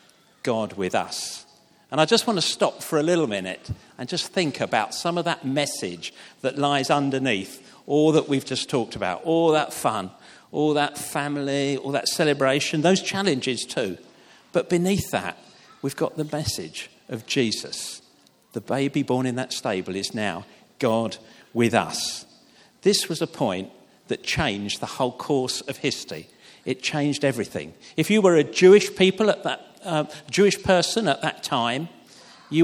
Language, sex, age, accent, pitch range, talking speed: English, male, 50-69, British, 130-170 Hz, 165 wpm